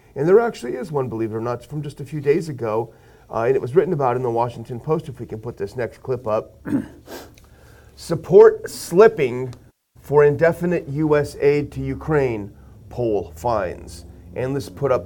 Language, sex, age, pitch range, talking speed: English, male, 40-59, 120-155 Hz, 185 wpm